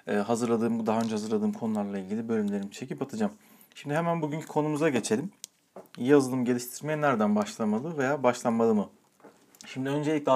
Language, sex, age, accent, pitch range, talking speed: Turkish, male, 40-59, native, 115-165 Hz, 135 wpm